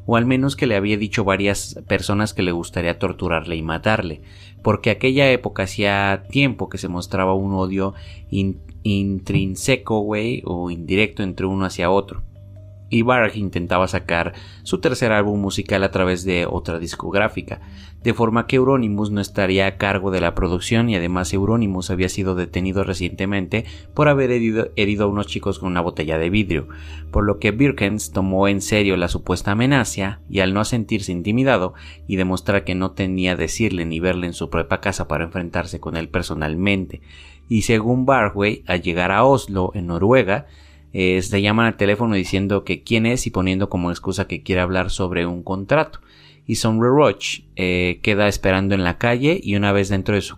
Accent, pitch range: Mexican, 90-105 Hz